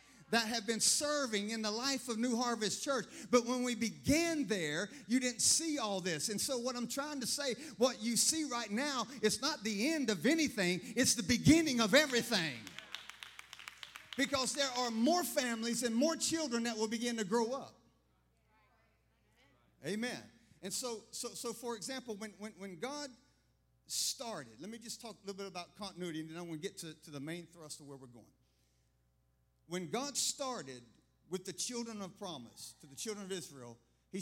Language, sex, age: English, male, 50-69